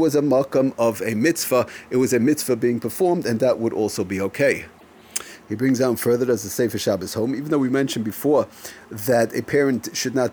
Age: 40-59